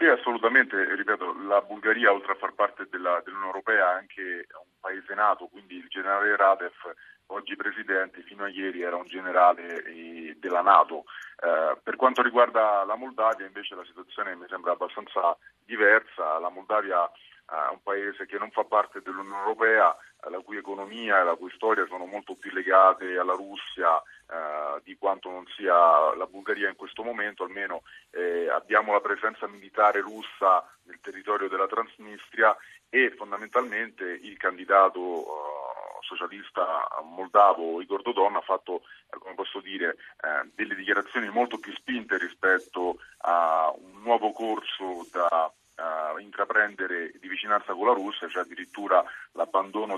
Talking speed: 155 wpm